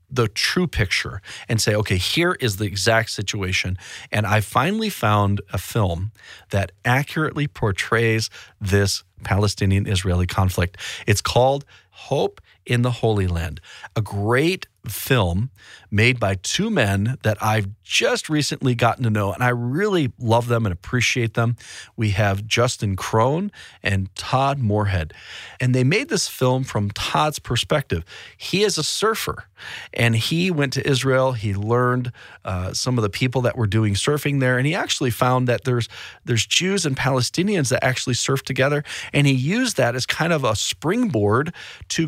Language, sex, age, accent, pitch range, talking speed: English, male, 40-59, American, 100-140 Hz, 160 wpm